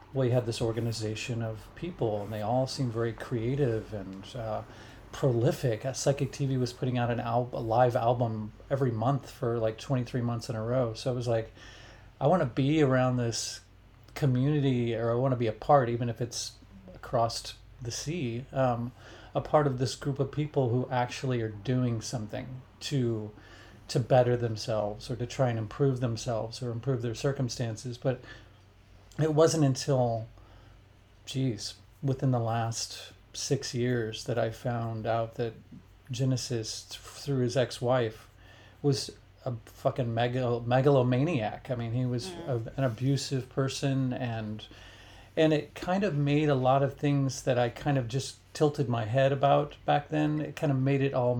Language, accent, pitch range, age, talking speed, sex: English, American, 110-135 Hz, 30-49, 170 wpm, male